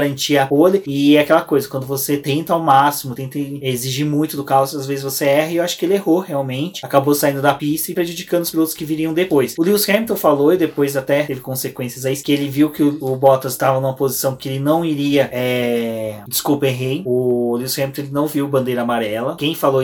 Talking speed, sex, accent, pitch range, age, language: 225 wpm, male, Brazilian, 135-160 Hz, 20-39, Portuguese